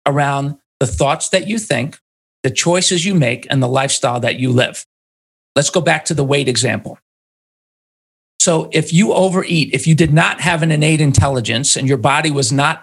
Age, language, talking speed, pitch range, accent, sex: 40-59, English, 185 wpm, 145-190 Hz, American, male